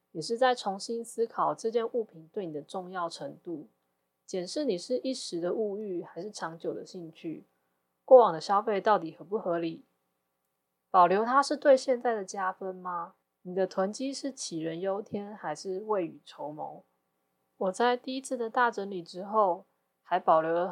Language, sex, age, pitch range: Chinese, female, 20-39, 165-215 Hz